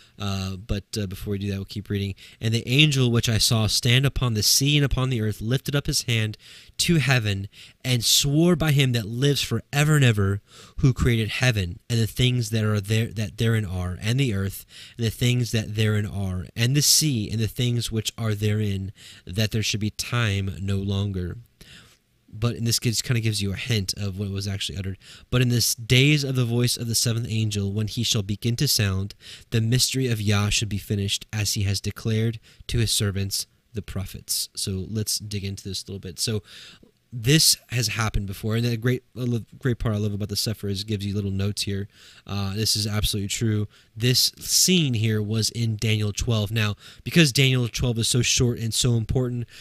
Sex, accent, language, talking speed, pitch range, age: male, American, English, 215 wpm, 105-125 Hz, 20-39